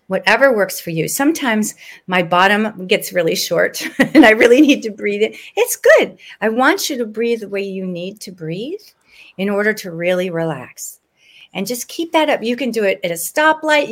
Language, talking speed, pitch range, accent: English, 205 wpm, 205-280 Hz, American